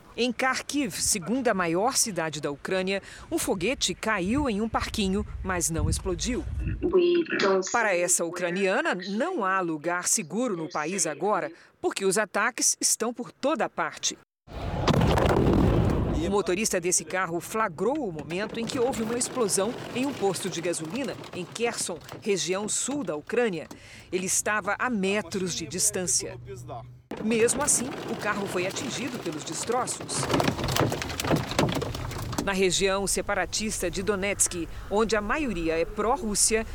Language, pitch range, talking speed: Portuguese, 175-235 Hz, 130 wpm